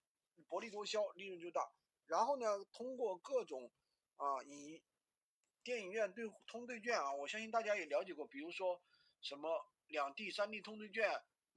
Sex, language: male, Chinese